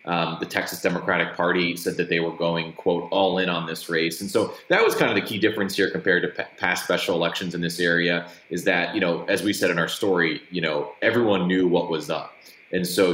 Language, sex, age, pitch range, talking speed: English, male, 20-39, 85-95 Hz, 240 wpm